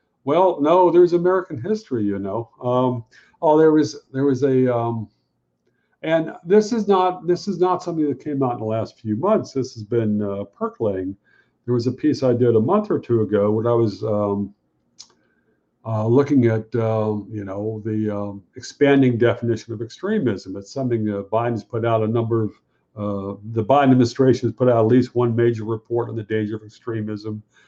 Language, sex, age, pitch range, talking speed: English, male, 50-69, 110-145 Hz, 195 wpm